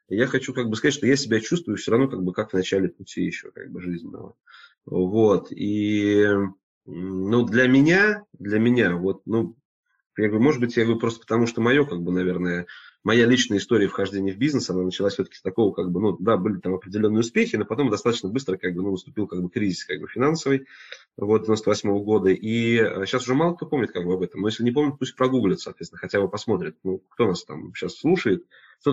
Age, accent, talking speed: 20-39, native, 220 wpm